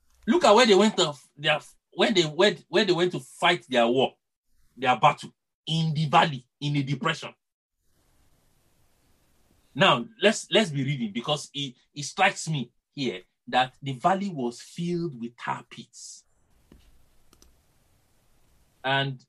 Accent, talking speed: Nigerian, 140 wpm